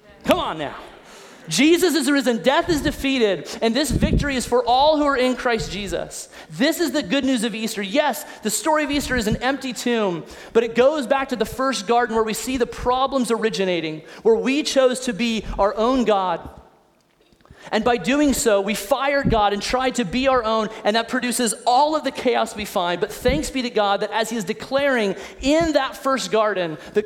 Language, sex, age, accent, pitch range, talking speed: English, male, 30-49, American, 210-265 Hz, 210 wpm